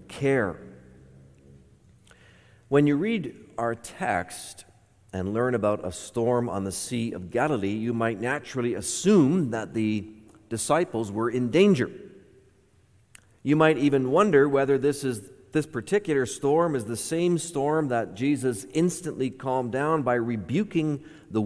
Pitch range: 110-155 Hz